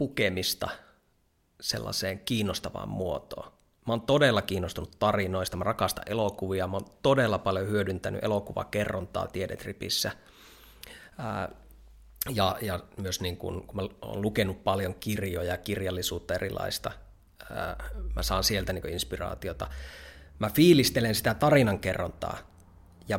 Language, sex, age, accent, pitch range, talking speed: Finnish, male, 30-49, native, 95-120 Hz, 110 wpm